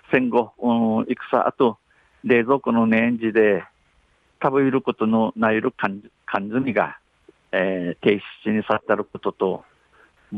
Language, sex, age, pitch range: Japanese, male, 60-79, 105-125 Hz